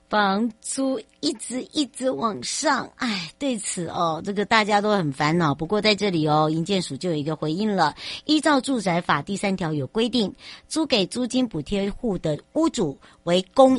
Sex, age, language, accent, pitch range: male, 60-79, Chinese, American, 160-235 Hz